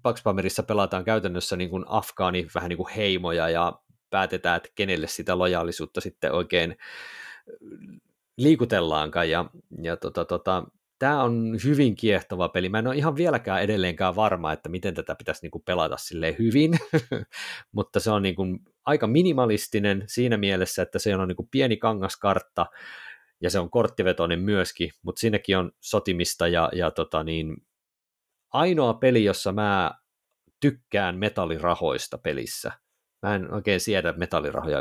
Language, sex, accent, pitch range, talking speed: Finnish, male, native, 90-115 Hz, 140 wpm